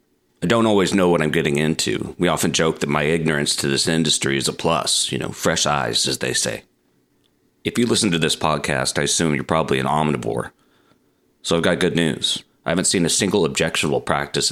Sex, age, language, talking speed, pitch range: male, 30-49, English, 210 wpm, 75-90 Hz